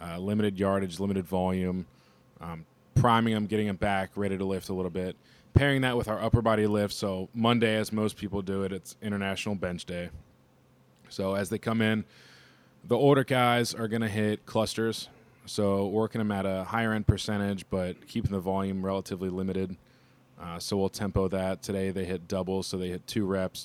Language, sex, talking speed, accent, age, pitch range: English, male, 195 wpm, American, 20-39, 95-105 Hz